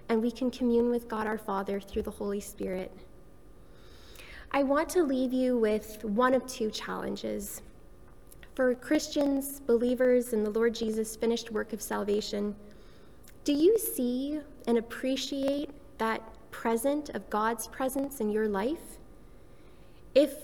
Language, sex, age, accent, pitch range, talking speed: English, female, 10-29, American, 210-260 Hz, 140 wpm